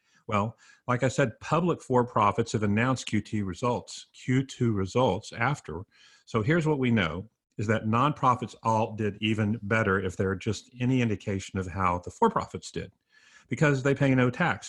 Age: 50-69